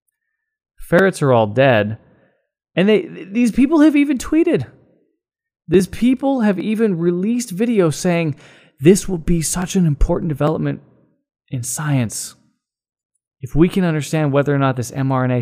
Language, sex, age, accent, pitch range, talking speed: English, male, 20-39, American, 130-180 Hz, 140 wpm